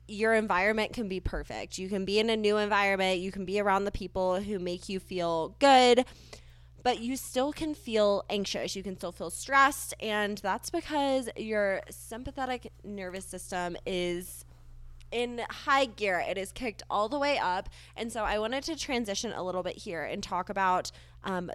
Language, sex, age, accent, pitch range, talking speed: English, female, 20-39, American, 180-225 Hz, 185 wpm